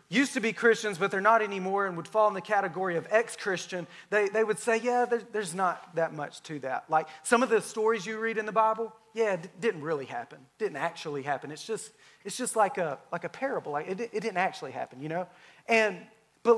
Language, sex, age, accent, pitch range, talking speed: English, male, 30-49, American, 190-230 Hz, 235 wpm